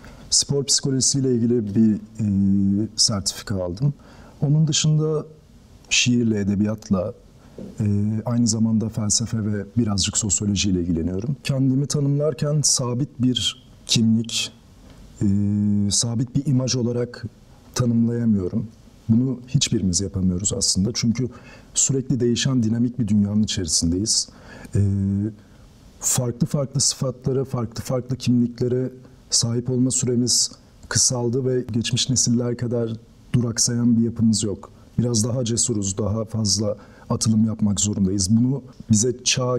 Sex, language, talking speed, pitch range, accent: male, Turkish, 110 wpm, 105-125 Hz, native